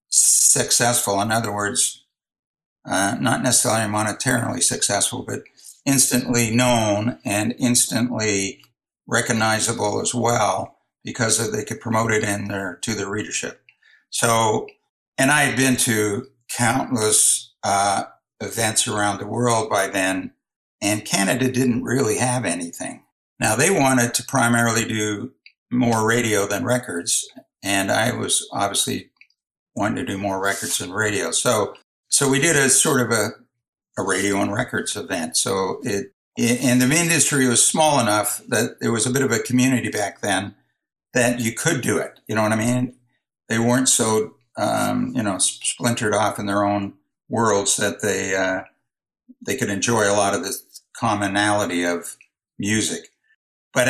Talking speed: 150 wpm